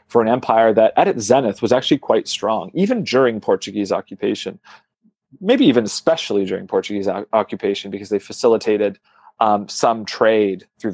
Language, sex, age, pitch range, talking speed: English, male, 30-49, 100-120 Hz, 155 wpm